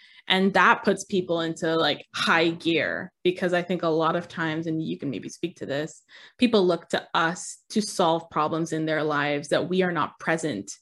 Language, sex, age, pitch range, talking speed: English, female, 20-39, 165-210 Hz, 205 wpm